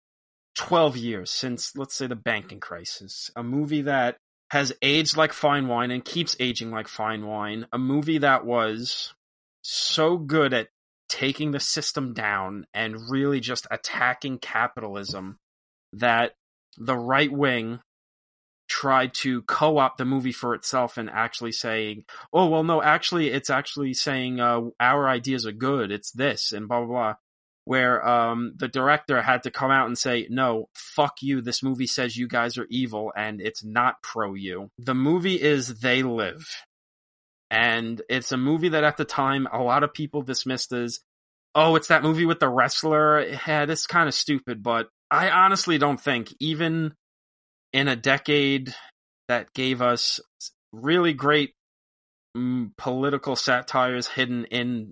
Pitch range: 115-145 Hz